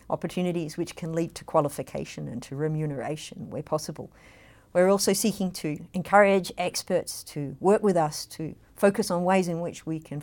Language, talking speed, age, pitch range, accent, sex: English, 170 wpm, 50-69, 155-200 Hz, Australian, female